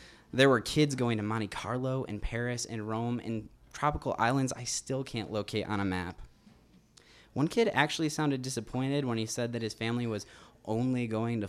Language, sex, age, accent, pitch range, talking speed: English, male, 20-39, American, 105-145 Hz, 190 wpm